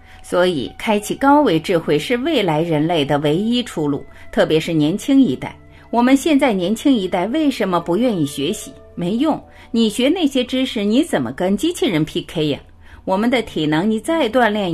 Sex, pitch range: female, 155-255 Hz